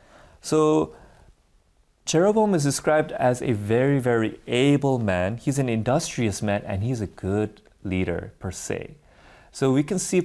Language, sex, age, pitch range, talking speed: English, male, 30-49, 105-140 Hz, 145 wpm